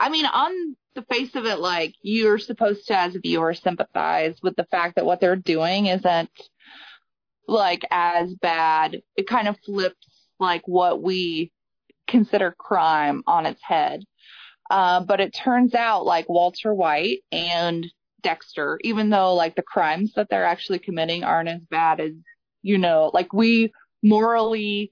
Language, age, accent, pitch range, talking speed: English, 20-39, American, 170-225 Hz, 160 wpm